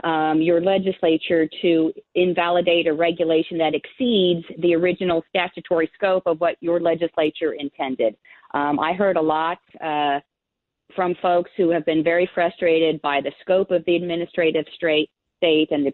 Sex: female